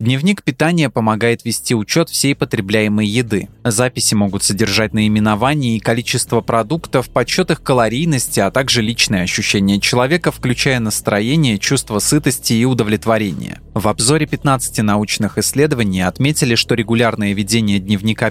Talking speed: 130 wpm